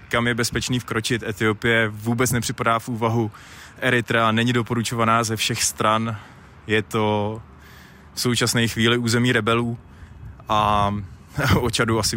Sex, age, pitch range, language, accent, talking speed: male, 20-39, 105-120 Hz, Czech, native, 130 wpm